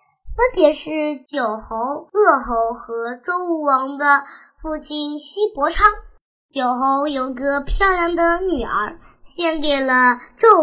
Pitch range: 275-355 Hz